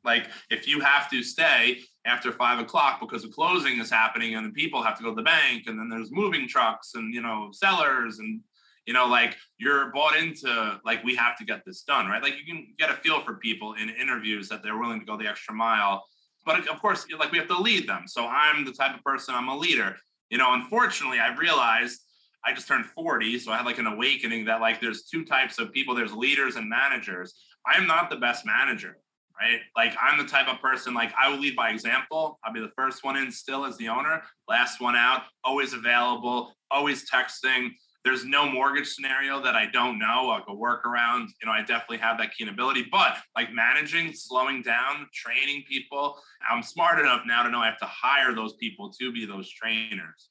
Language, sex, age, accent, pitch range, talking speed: English, male, 20-39, American, 110-135 Hz, 225 wpm